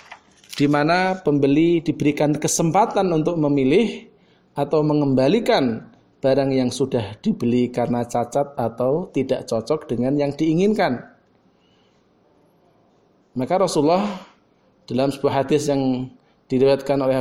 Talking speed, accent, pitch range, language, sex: 100 wpm, native, 135-175 Hz, Indonesian, male